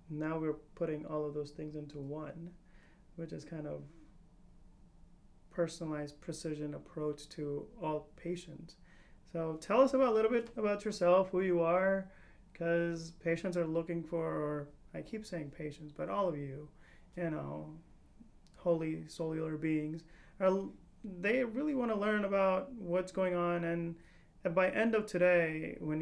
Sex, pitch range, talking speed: male, 155-180 Hz, 150 wpm